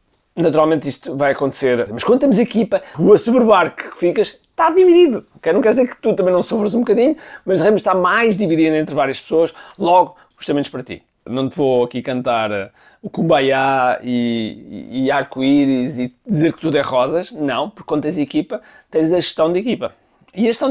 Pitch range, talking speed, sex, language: 150-215 Hz, 195 wpm, male, Portuguese